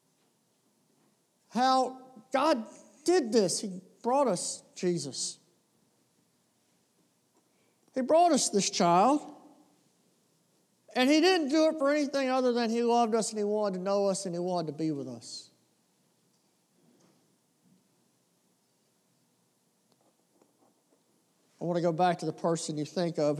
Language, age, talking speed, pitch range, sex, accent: English, 60-79, 125 wpm, 170-245 Hz, male, American